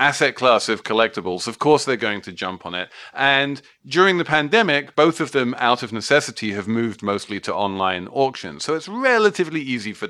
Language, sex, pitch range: English, male, 105-145 Hz